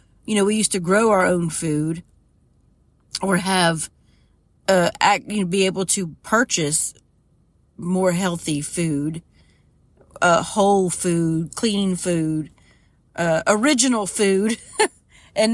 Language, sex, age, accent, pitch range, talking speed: English, female, 40-59, American, 165-210 Hz, 120 wpm